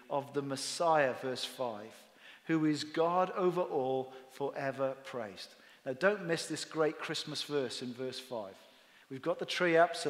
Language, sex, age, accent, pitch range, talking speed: English, male, 40-59, British, 140-205 Hz, 165 wpm